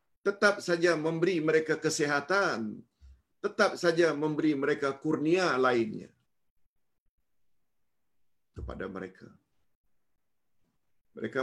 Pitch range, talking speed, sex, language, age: 115-170 Hz, 75 wpm, male, Malayalam, 50-69